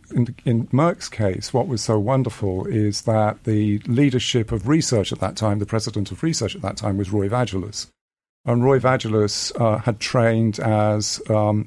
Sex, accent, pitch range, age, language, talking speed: male, British, 105-120 Hz, 50-69, English, 175 wpm